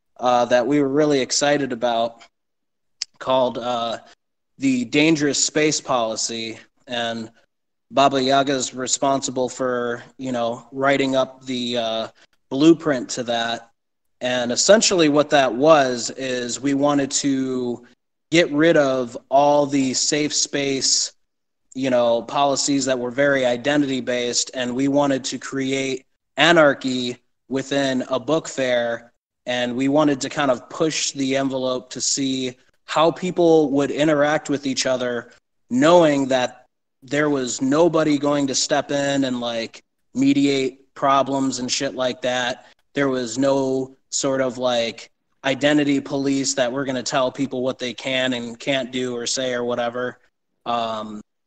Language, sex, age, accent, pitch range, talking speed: English, male, 20-39, American, 125-140 Hz, 140 wpm